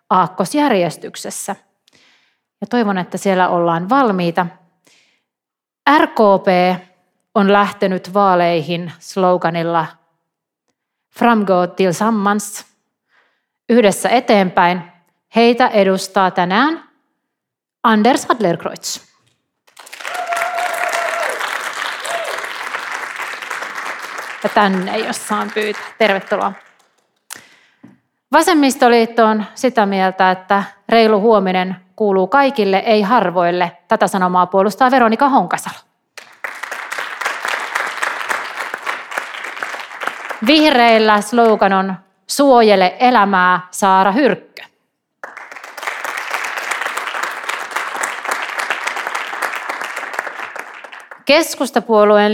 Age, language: 30-49, Finnish